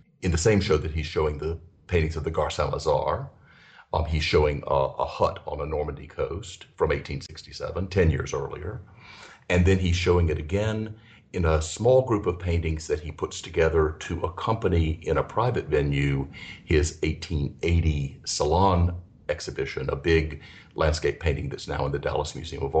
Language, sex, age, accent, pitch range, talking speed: English, male, 50-69, American, 75-90 Hz, 170 wpm